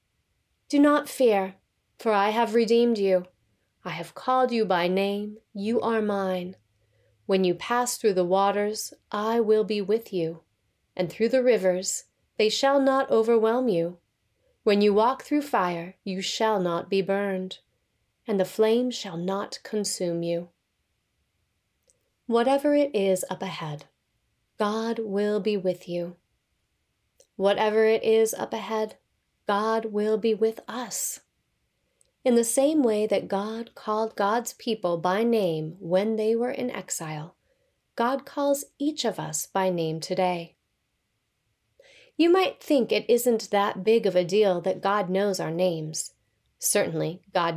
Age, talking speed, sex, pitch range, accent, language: 30-49, 145 wpm, female, 180-235 Hz, American, English